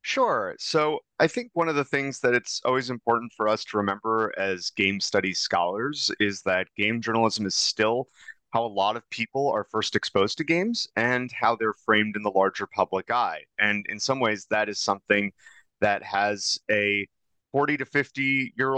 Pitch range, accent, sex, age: 100-135 Hz, American, male, 30-49